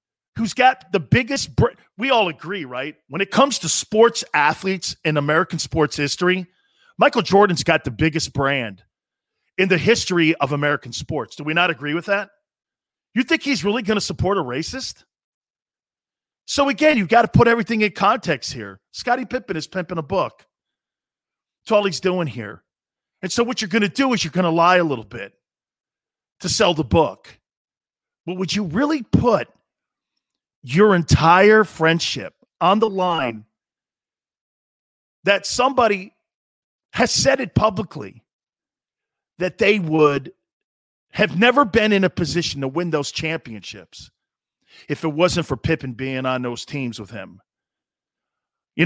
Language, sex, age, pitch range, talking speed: English, male, 40-59, 140-210 Hz, 155 wpm